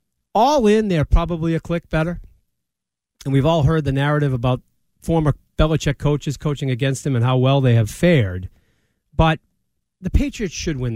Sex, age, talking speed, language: male, 40-59, 170 wpm, English